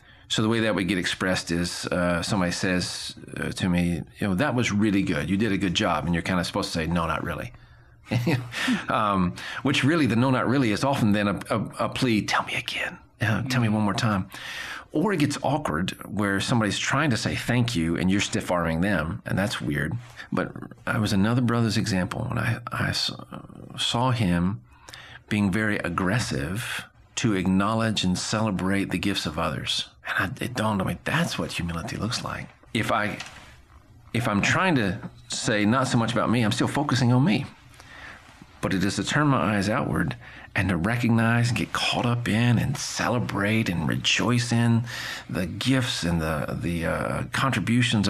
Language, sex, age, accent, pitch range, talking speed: English, male, 40-59, American, 90-120 Hz, 195 wpm